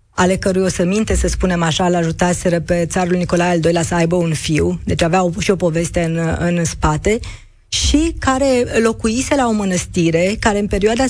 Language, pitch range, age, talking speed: Romanian, 170-205 Hz, 20-39, 195 wpm